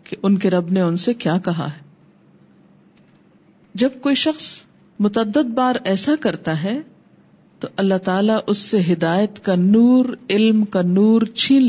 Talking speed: 155 wpm